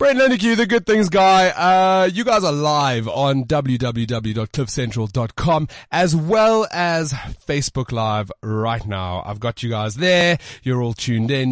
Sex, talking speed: male, 150 wpm